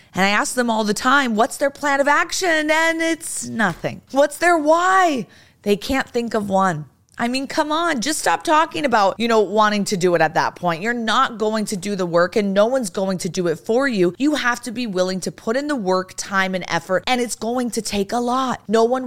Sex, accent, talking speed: female, American, 245 wpm